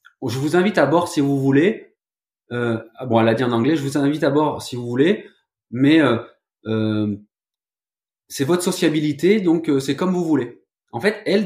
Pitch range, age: 115-155 Hz, 20-39